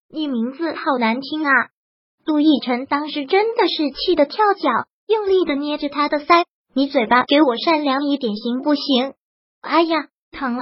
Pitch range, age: 265-325 Hz, 20-39